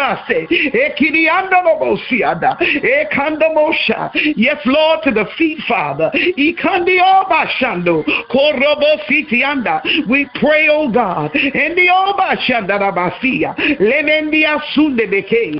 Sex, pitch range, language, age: male, 240-310 Hz, English, 50-69